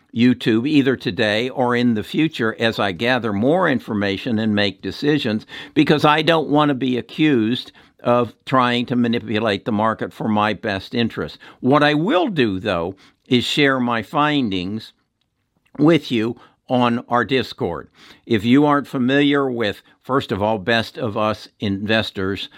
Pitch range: 110-135 Hz